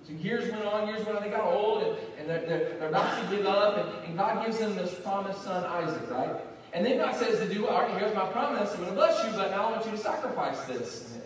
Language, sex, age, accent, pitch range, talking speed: English, male, 30-49, American, 165-225 Hz, 270 wpm